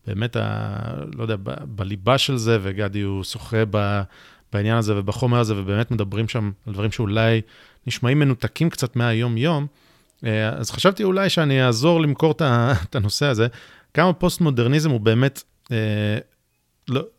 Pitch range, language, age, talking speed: 110-150 Hz, Hebrew, 30-49, 145 wpm